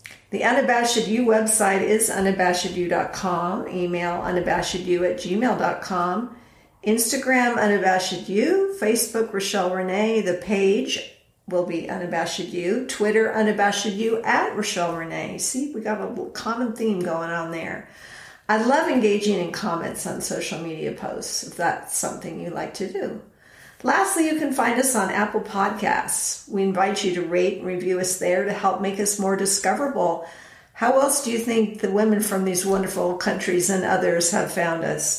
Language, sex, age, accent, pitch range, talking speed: English, female, 50-69, American, 175-215 Hz, 155 wpm